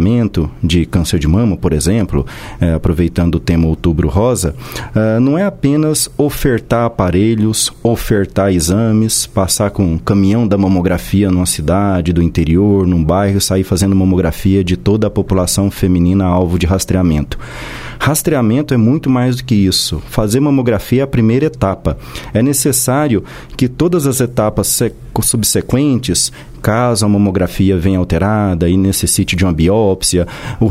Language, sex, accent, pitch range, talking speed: Portuguese, male, Brazilian, 95-120 Hz, 145 wpm